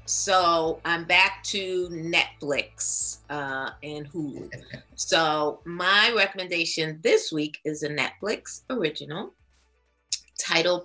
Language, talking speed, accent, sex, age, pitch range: English, 100 wpm, American, female, 30-49, 150-190 Hz